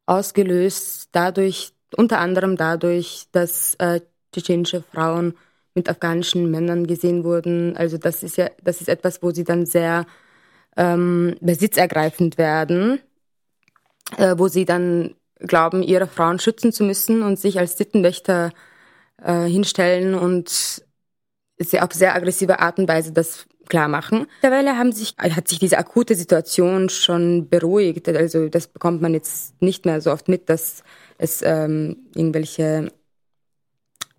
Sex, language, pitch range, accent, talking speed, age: female, German, 165-190 Hz, German, 140 wpm, 20-39